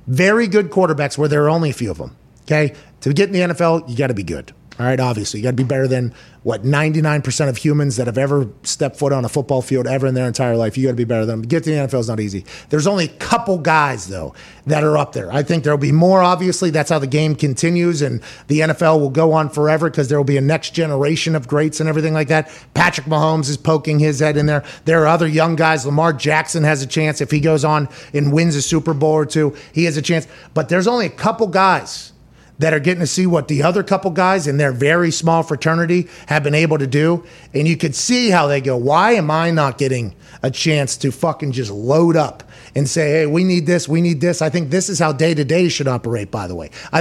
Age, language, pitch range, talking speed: 30-49, English, 140-170 Hz, 260 wpm